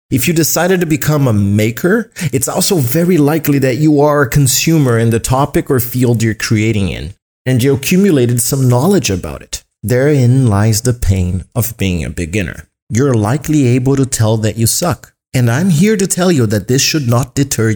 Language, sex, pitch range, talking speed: English, male, 115-155 Hz, 195 wpm